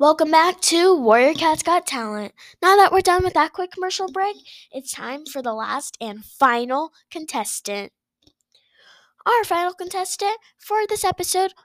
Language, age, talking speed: English, 10-29, 155 wpm